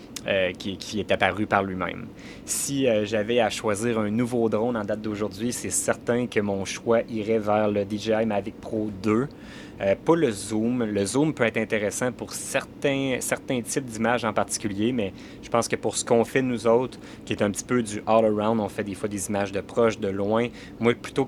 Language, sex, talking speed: French, male, 210 wpm